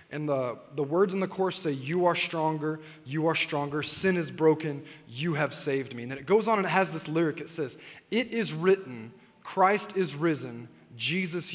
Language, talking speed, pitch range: English, 210 wpm, 170-235 Hz